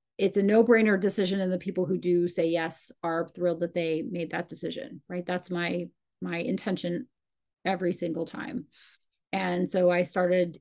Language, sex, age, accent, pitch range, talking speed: English, female, 30-49, American, 175-190 Hz, 170 wpm